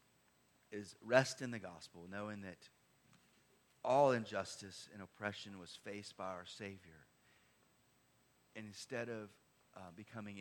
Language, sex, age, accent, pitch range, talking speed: English, male, 40-59, American, 85-110 Hz, 120 wpm